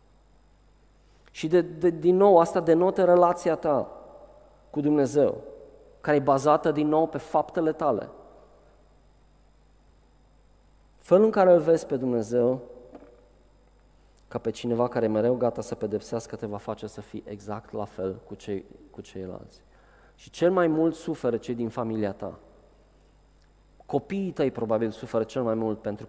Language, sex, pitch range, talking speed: Romanian, male, 120-170 Hz, 145 wpm